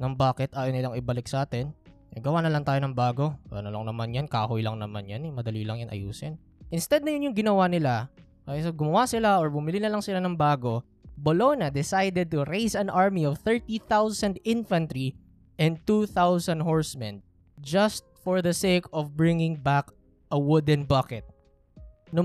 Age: 20-39